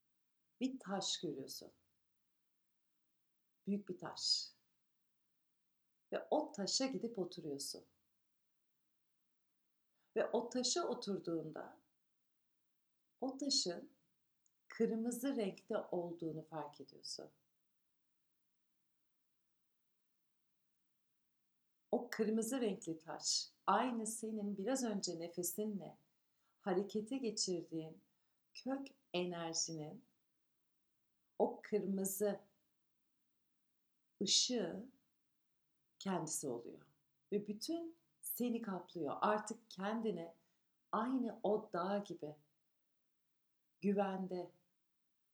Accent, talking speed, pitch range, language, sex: native, 70 wpm, 165-220 Hz, Turkish, female